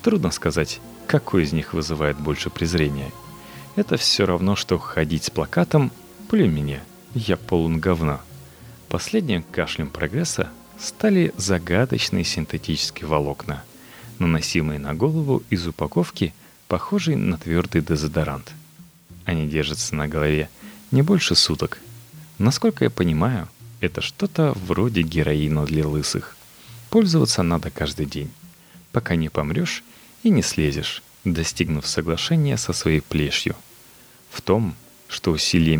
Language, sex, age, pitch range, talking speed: Russian, male, 30-49, 80-115 Hz, 115 wpm